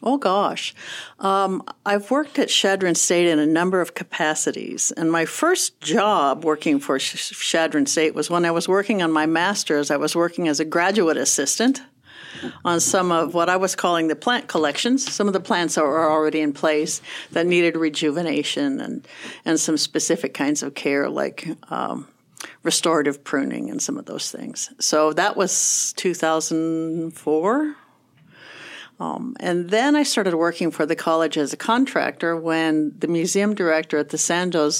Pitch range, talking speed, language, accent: 155-190 Hz, 165 wpm, English, American